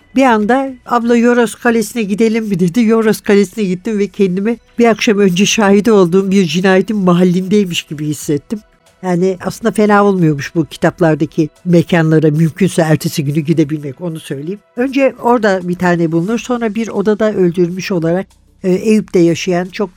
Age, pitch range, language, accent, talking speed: 60-79, 165-215 Hz, Turkish, native, 145 wpm